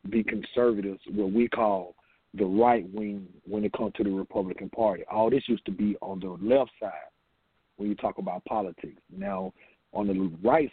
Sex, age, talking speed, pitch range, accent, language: male, 40-59, 185 wpm, 100-110 Hz, American, English